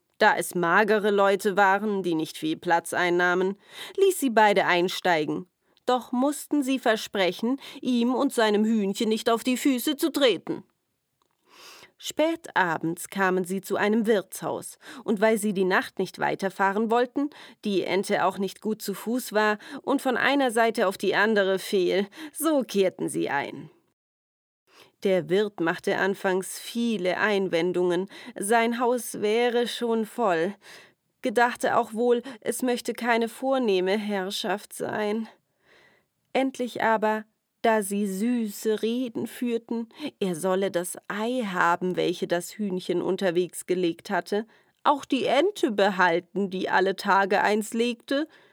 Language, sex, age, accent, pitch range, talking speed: German, female, 30-49, German, 190-240 Hz, 135 wpm